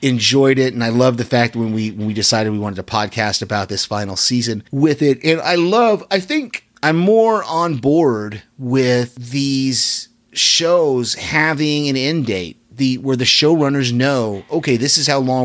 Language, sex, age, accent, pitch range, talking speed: English, male, 30-49, American, 110-135 Hz, 185 wpm